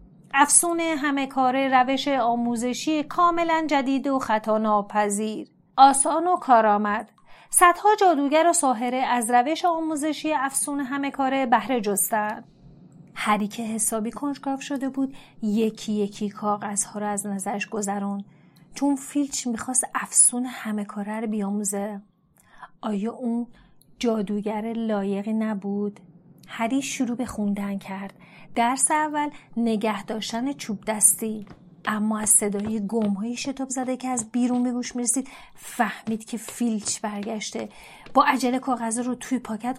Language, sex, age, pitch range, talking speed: Persian, female, 30-49, 210-270 Hz, 120 wpm